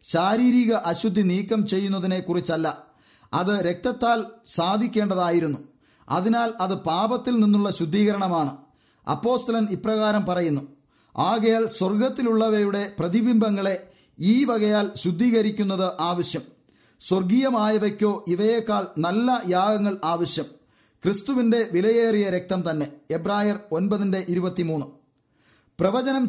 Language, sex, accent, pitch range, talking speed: English, male, Indian, 175-220 Hz, 75 wpm